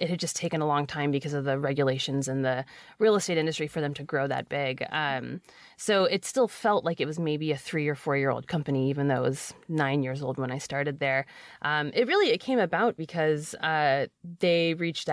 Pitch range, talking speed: 140-165 Hz, 235 wpm